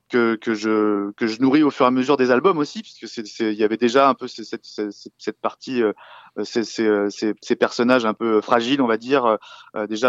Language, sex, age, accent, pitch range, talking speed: French, male, 20-39, French, 110-130 Hz, 250 wpm